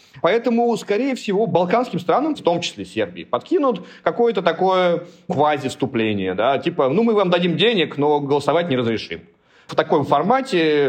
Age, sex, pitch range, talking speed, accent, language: 30-49, male, 125-175 Hz, 150 wpm, native, Russian